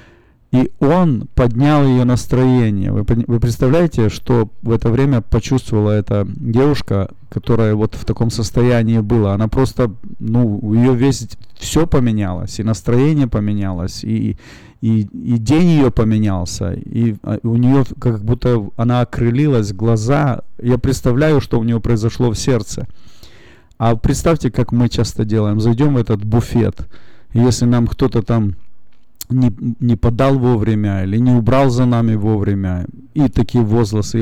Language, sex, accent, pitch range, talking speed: Russian, male, native, 110-130 Hz, 140 wpm